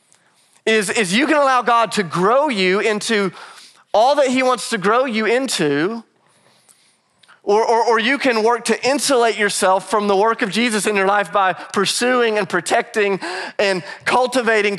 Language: English